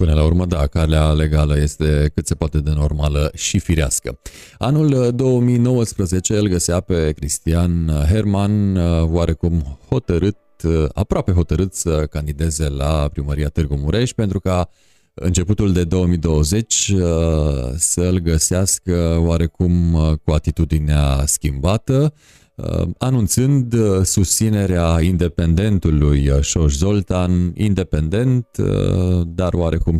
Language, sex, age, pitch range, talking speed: Romanian, male, 30-49, 75-100 Hz, 100 wpm